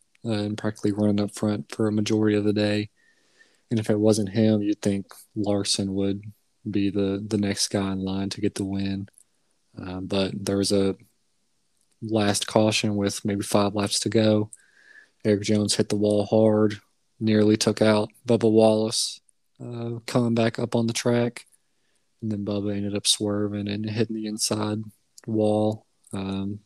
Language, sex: English, male